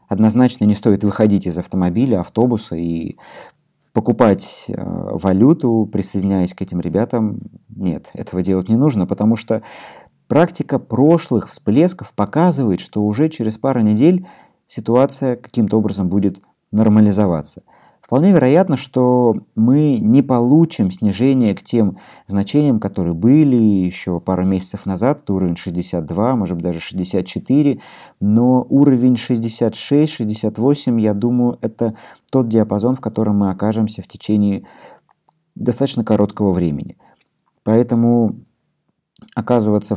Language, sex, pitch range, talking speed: Russian, male, 95-125 Hz, 115 wpm